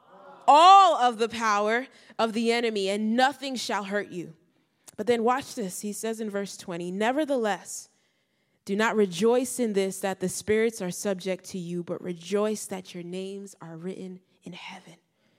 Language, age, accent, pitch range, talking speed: English, 20-39, American, 180-220 Hz, 170 wpm